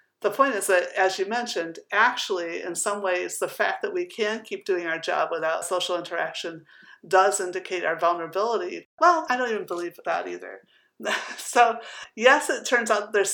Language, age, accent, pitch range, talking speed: English, 50-69, American, 185-250 Hz, 180 wpm